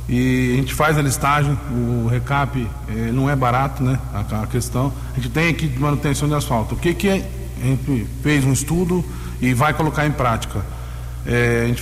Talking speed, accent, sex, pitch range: 210 wpm, Brazilian, male, 125-155 Hz